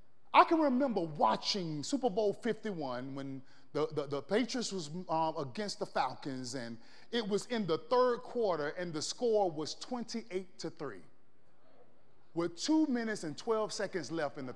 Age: 30-49